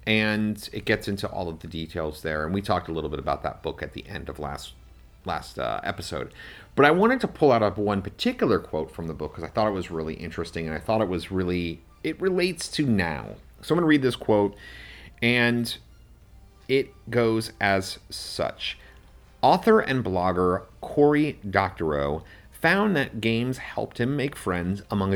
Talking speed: 195 wpm